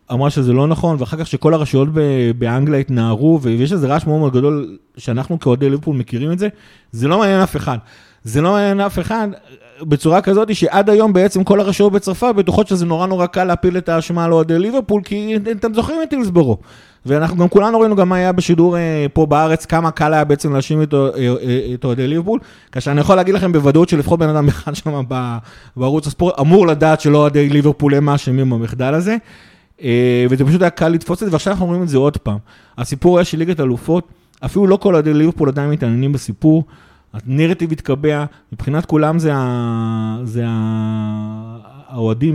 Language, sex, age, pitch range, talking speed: Hebrew, male, 30-49, 125-170 Hz, 165 wpm